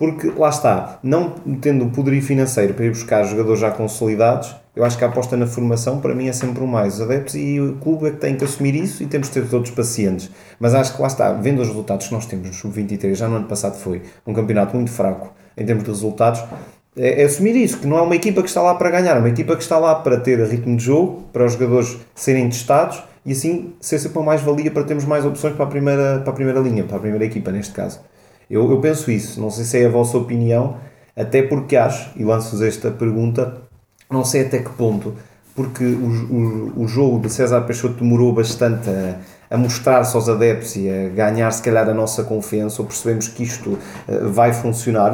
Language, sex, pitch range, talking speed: Portuguese, male, 110-140 Hz, 230 wpm